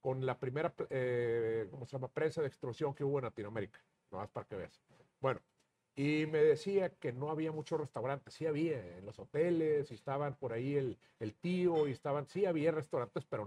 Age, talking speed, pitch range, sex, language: 50-69, 205 wpm, 130-155 Hz, male, Spanish